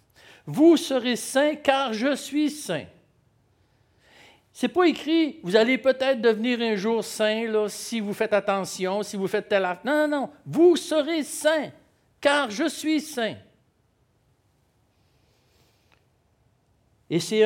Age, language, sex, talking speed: 60-79, French, male, 155 wpm